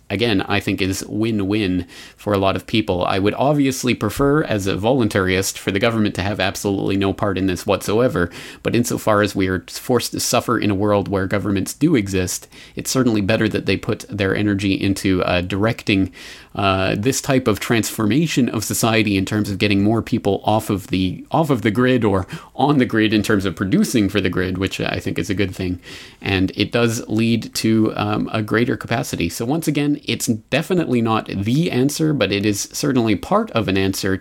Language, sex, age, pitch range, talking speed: English, male, 30-49, 95-115 Hz, 205 wpm